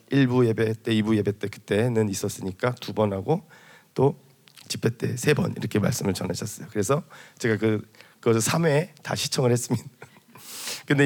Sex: male